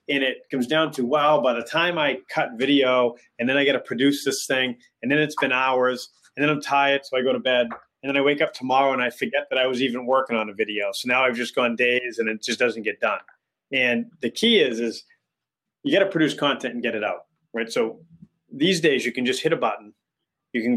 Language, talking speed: English, 255 wpm